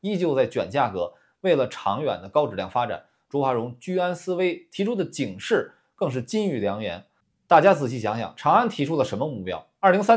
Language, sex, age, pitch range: Chinese, male, 20-39, 110-165 Hz